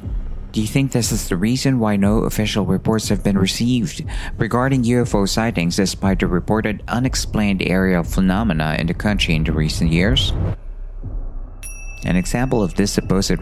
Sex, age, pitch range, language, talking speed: male, 50-69, 90-120 Hz, Filipino, 155 wpm